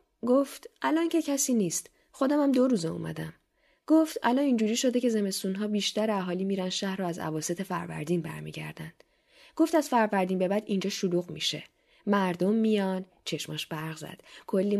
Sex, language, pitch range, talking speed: female, Persian, 180-245 Hz, 160 wpm